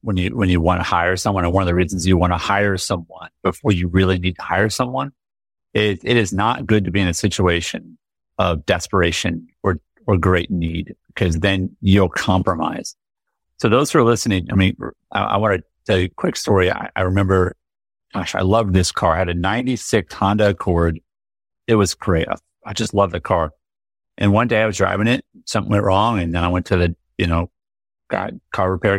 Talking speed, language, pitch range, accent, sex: 215 wpm, English, 90-105 Hz, American, male